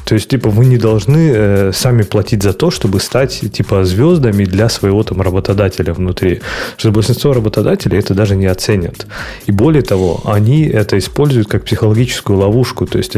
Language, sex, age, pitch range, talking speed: Russian, male, 30-49, 100-135 Hz, 170 wpm